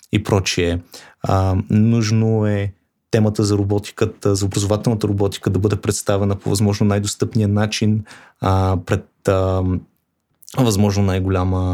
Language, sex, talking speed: Bulgarian, male, 110 wpm